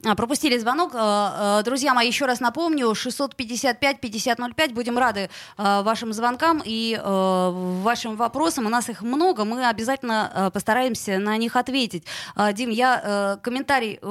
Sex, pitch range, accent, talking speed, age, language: female, 205-255 Hz, native, 120 wpm, 20-39, Russian